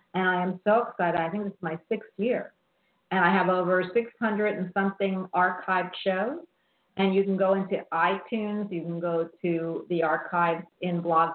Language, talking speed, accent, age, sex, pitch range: English, 180 wpm, American, 50-69, female, 170-210 Hz